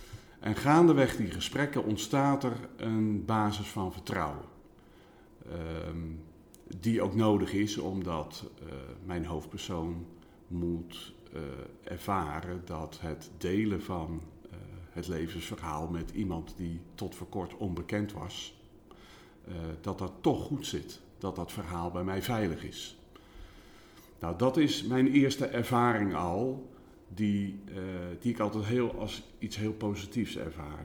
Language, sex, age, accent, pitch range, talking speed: Dutch, male, 50-69, Dutch, 90-120 Hz, 125 wpm